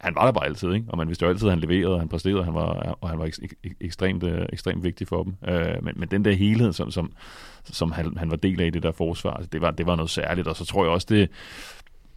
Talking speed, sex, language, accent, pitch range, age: 270 wpm, male, Danish, native, 85-95 Hz, 30-49